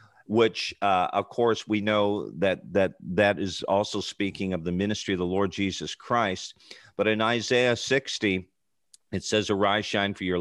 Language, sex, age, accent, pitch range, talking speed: English, male, 50-69, American, 90-110 Hz, 175 wpm